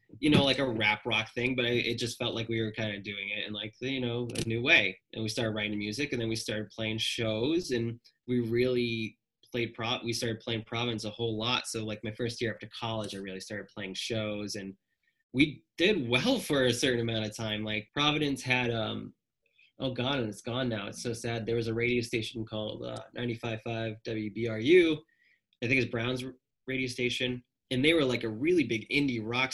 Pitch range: 110-125 Hz